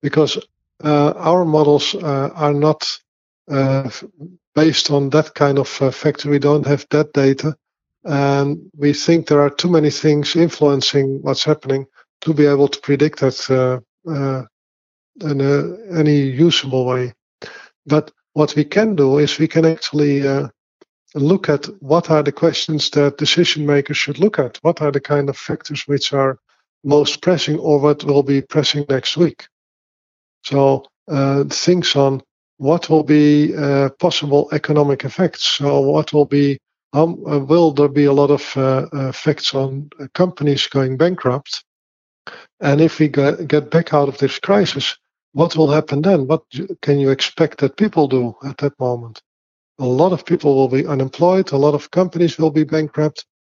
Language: Swedish